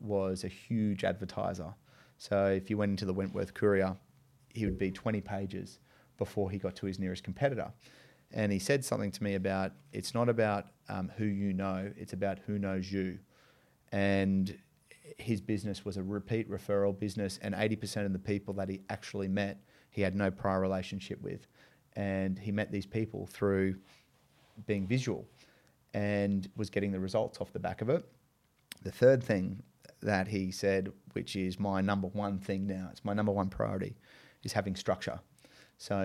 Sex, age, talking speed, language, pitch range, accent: male, 30-49, 175 wpm, English, 95-105 Hz, Australian